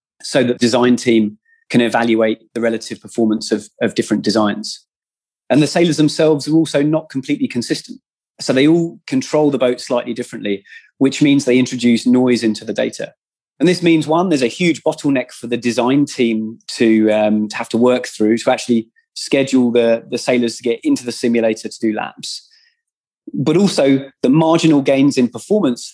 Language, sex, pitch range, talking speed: English, male, 115-150 Hz, 180 wpm